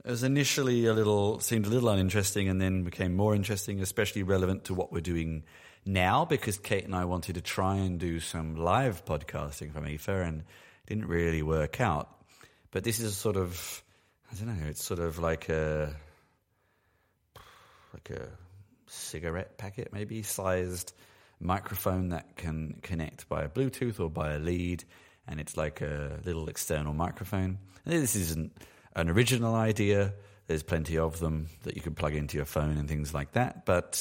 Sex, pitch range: male, 80-105 Hz